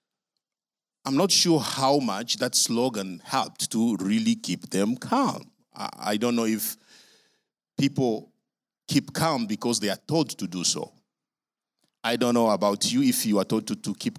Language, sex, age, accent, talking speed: English, male, 50-69, Nigerian, 165 wpm